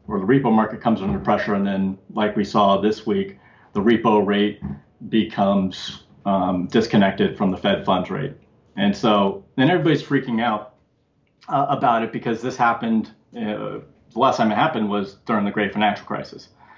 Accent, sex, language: American, male, English